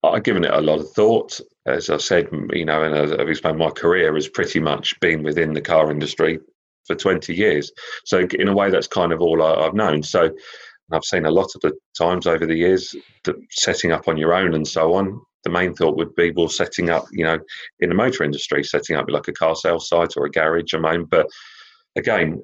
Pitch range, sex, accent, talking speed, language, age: 75-110 Hz, male, British, 235 wpm, English, 40-59